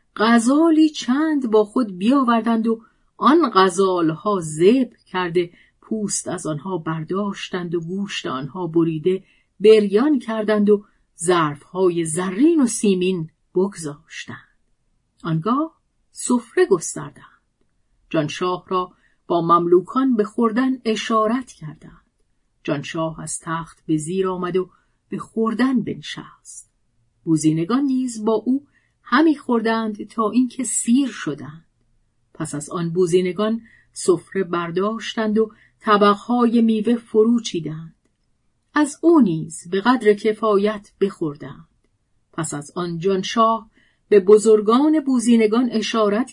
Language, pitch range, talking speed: Persian, 175-240 Hz, 110 wpm